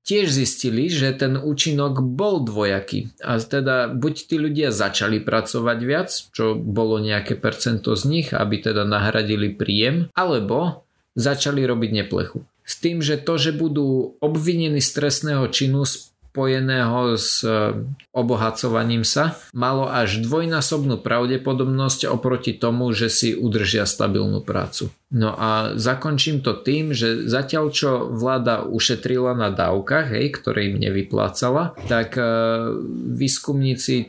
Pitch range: 105-130 Hz